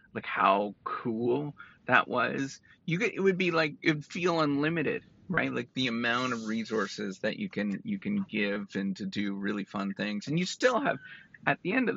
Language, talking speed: English, 200 wpm